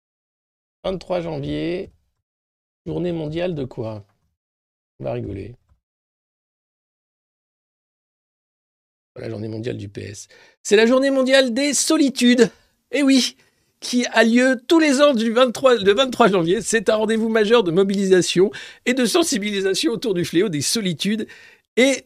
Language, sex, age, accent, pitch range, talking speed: French, male, 50-69, French, 135-225 Hz, 135 wpm